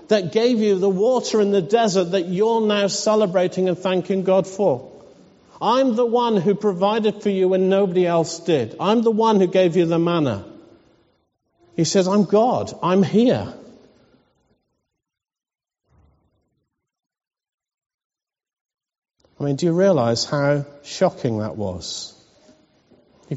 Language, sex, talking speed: English, male, 145 wpm